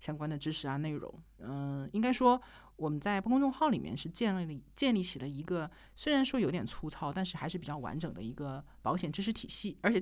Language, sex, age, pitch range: Chinese, male, 50-69, 155-215 Hz